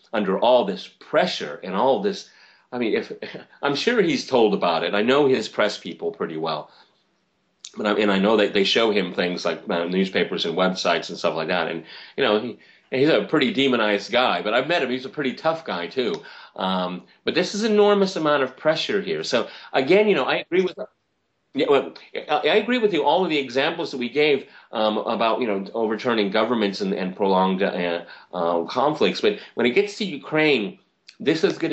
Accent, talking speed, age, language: American, 210 wpm, 30-49, English